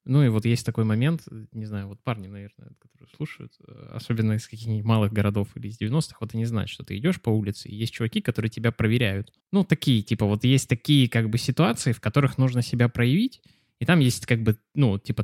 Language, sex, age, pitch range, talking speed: Russian, male, 20-39, 110-135 Hz, 220 wpm